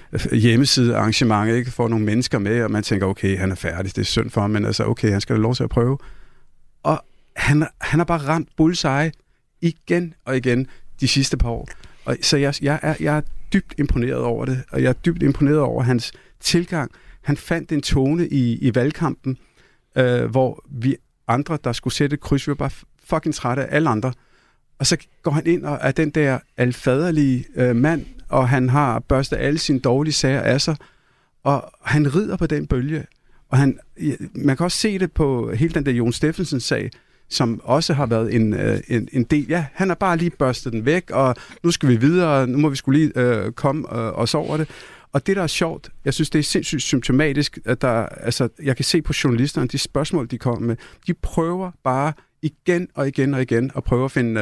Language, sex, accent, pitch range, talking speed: Danish, male, native, 120-155 Hz, 215 wpm